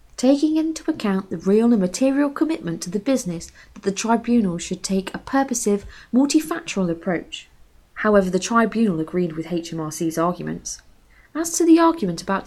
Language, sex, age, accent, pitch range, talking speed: English, female, 20-39, British, 185-270 Hz, 155 wpm